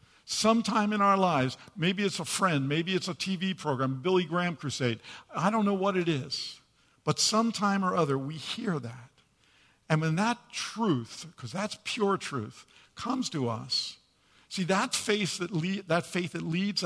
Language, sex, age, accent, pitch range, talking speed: English, male, 50-69, American, 135-185 Hz, 165 wpm